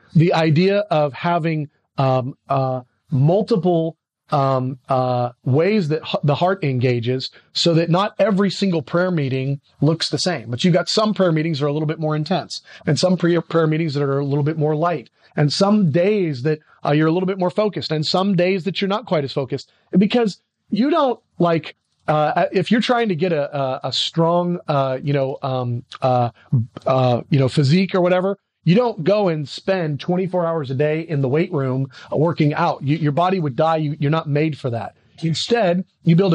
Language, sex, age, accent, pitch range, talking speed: English, male, 30-49, American, 145-190 Hz, 205 wpm